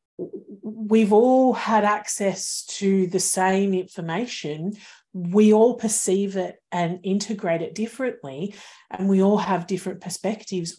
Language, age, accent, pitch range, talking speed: English, 40-59, Australian, 175-215 Hz, 120 wpm